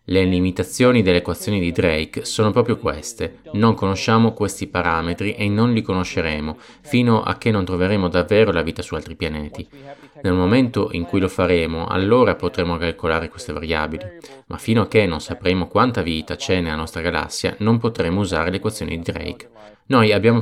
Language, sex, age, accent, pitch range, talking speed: Italian, male, 20-39, native, 85-110 Hz, 175 wpm